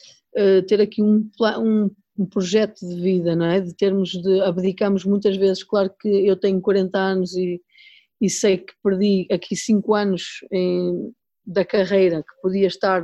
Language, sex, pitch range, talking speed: Portuguese, female, 190-215 Hz, 160 wpm